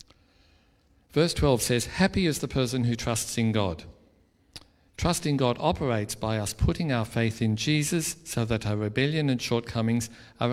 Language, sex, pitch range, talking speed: English, male, 100-135 Hz, 160 wpm